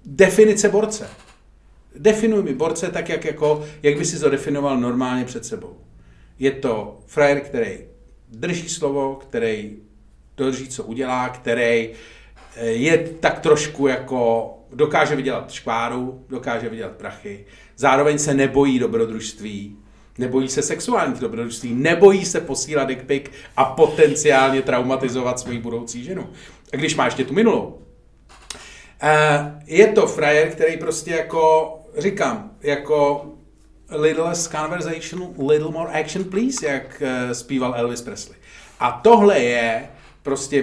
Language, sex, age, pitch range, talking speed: Czech, male, 40-59, 130-185 Hz, 120 wpm